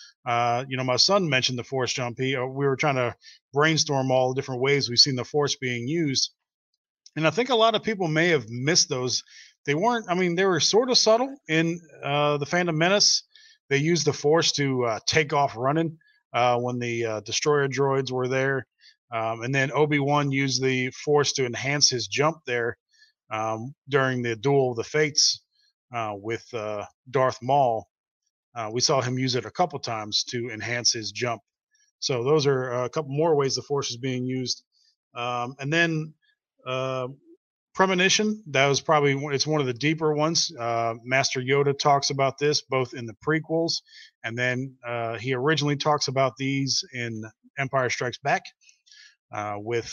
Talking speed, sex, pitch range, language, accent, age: 185 wpm, male, 125-155 Hz, English, American, 30-49